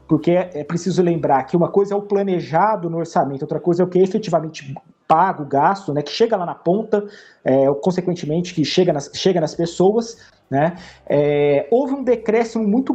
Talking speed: 190 wpm